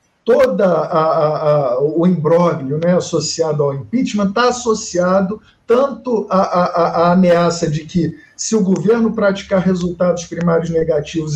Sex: male